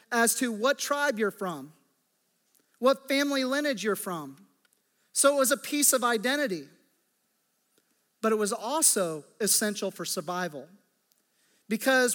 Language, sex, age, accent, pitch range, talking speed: English, male, 40-59, American, 215-265 Hz, 130 wpm